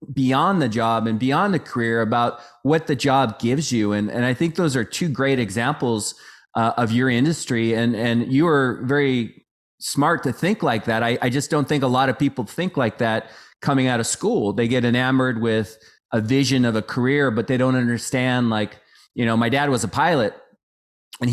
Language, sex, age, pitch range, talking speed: English, male, 30-49, 120-145 Hz, 210 wpm